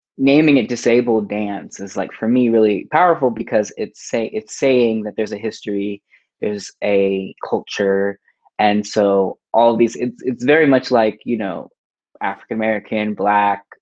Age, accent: 20-39, American